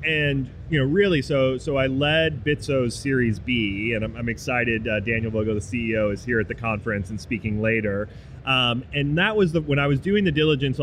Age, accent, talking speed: 30-49, American, 215 wpm